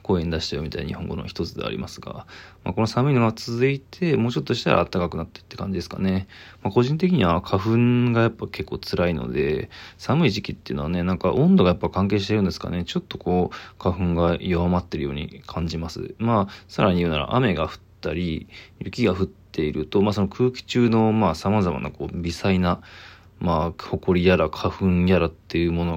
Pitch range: 85-100 Hz